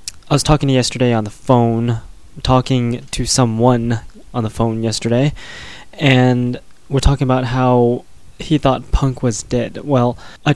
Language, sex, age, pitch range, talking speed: English, male, 20-39, 115-130 Hz, 150 wpm